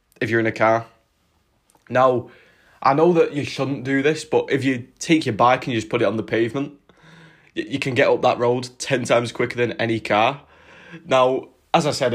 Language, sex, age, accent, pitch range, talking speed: English, male, 20-39, British, 110-145 Hz, 215 wpm